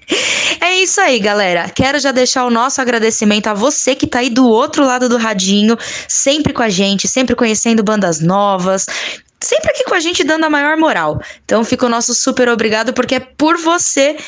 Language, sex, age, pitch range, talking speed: Portuguese, female, 10-29, 215-285 Hz, 200 wpm